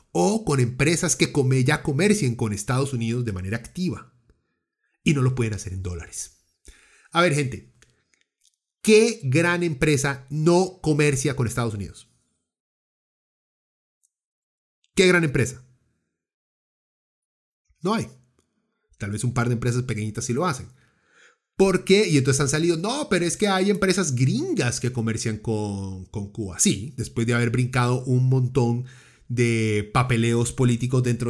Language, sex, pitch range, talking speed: Spanish, male, 120-150 Hz, 140 wpm